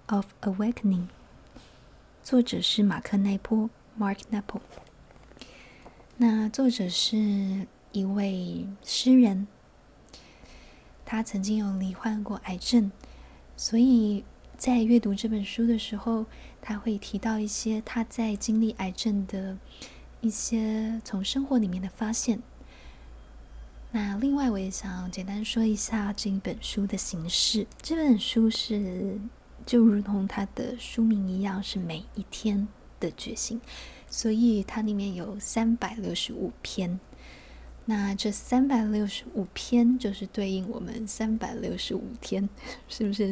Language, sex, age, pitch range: Chinese, female, 20-39, 195-225 Hz